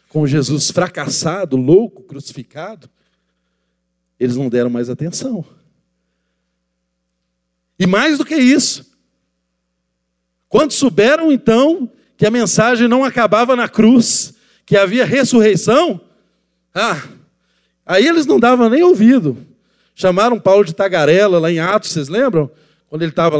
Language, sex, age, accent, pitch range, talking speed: Portuguese, male, 40-59, Brazilian, 145-230 Hz, 120 wpm